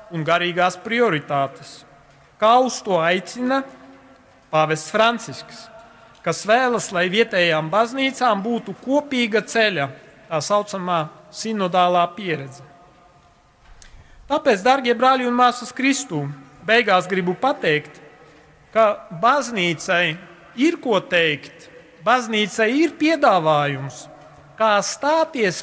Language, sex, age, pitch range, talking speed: English, male, 40-59, 155-245 Hz, 90 wpm